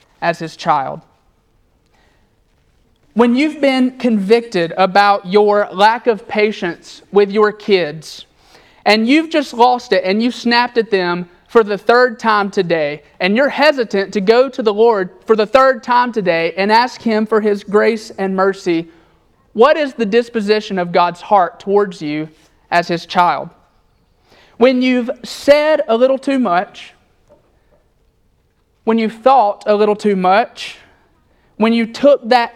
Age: 30-49